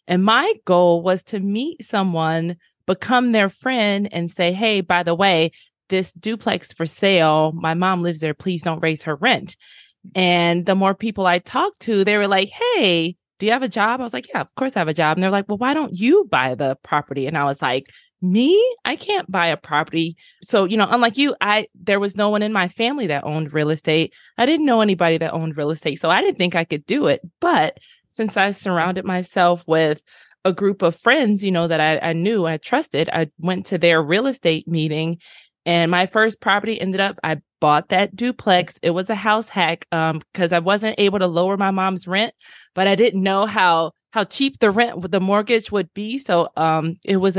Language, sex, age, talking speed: English, female, 20-39, 220 wpm